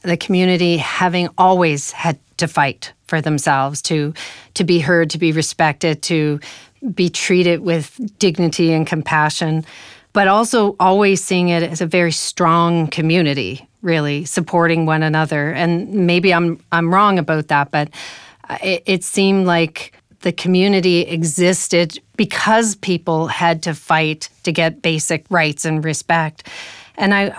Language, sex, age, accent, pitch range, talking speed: English, female, 40-59, American, 165-190 Hz, 140 wpm